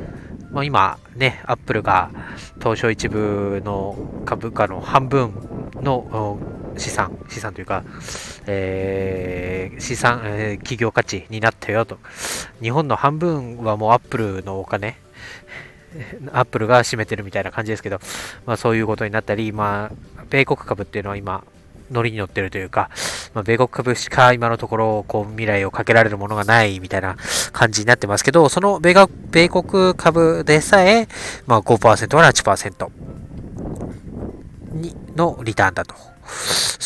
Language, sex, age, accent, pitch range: Japanese, male, 20-39, native, 100-125 Hz